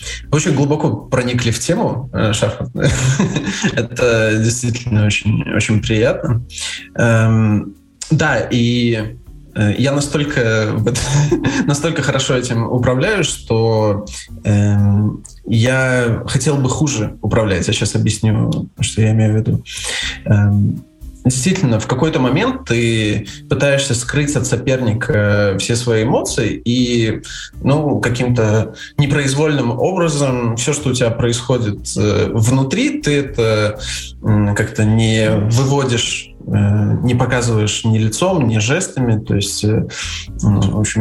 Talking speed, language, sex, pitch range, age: 100 wpm, Russian, male, 105-130 Hz, 20-39